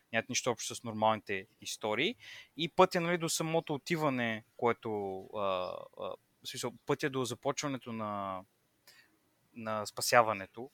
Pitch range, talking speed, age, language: 110-135 Hz, 115 wpm, 20-39, Bulgarian